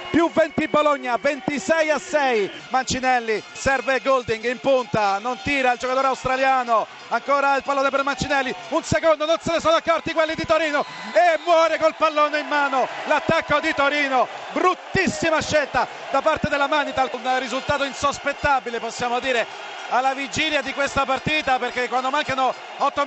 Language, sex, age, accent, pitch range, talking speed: Italian, male, 40-59, native, 240-290 Hz, 155 wpm